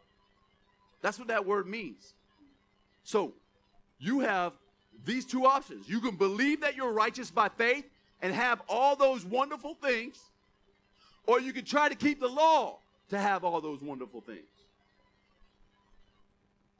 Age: 40-59